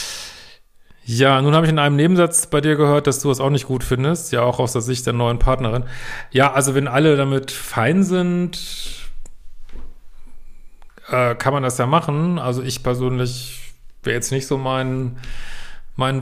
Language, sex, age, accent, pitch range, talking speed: German, male, 40-59, German, 120-145 Hz, 180 wpm